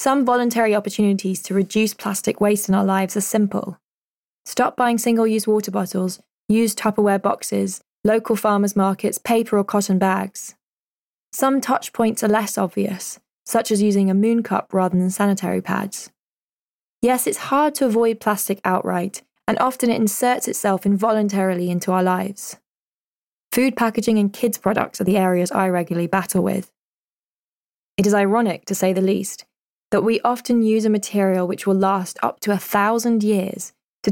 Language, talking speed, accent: English, 165 wpm, British